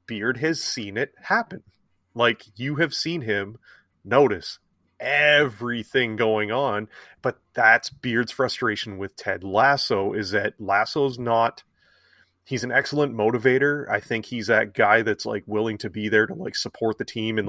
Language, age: English, 30-49